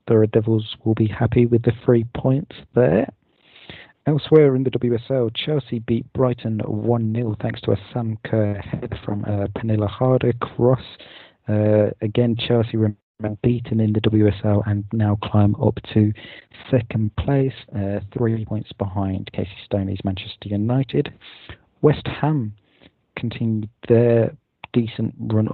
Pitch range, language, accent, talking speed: 105-120 Hz, English, British, 135 wpm